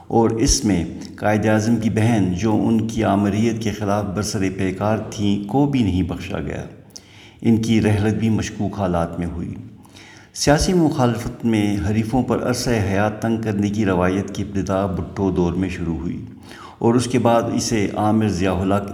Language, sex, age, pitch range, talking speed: Urdu, male, 50-69, 100-115 Hz, 170 wpm